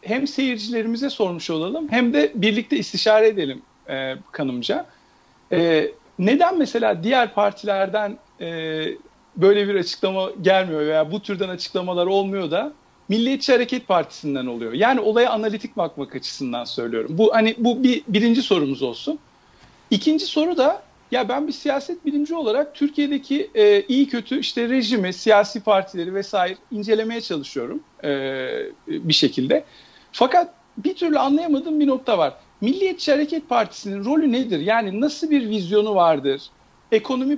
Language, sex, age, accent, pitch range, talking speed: Turkish, male, 50-69, native, 200-280 Hz, 135 wpm